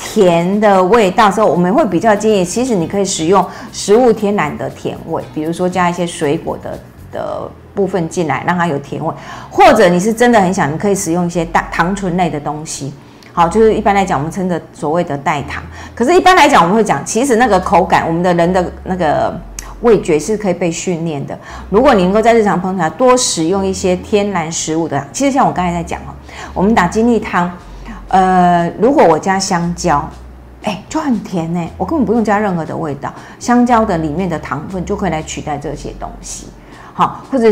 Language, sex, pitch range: Chinese, female, 165-210 Hz